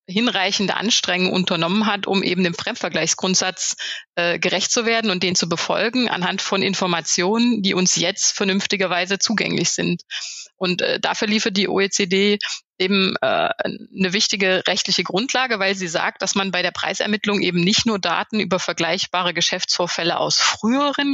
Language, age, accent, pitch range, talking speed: German, 30-49, German, 180-215 Hz, 155 wpm